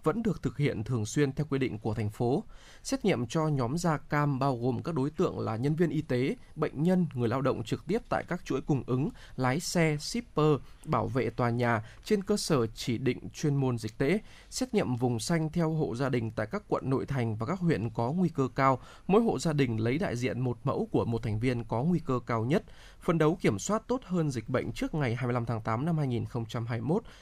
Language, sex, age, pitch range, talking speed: Vietnamese, male, 20-39, 120-160 Hz, 240 wpm